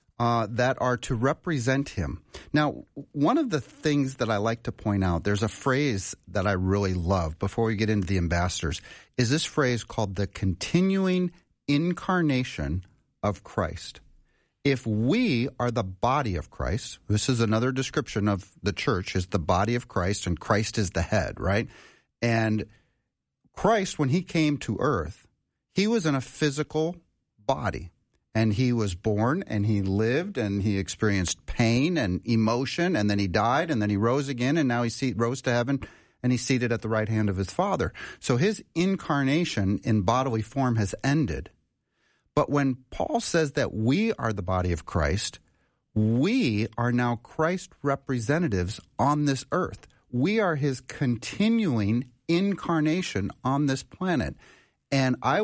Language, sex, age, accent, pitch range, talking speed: English, male, 40-59, American, 105-145 Hz, 165 wpm